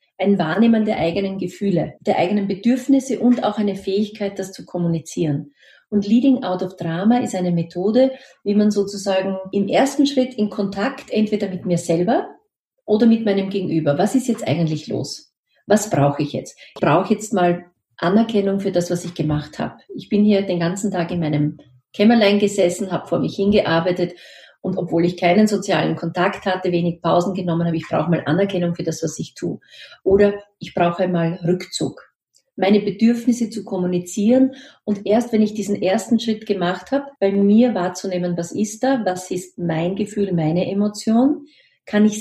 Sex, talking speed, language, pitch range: female, 180 wpm, German, 175-215 Hz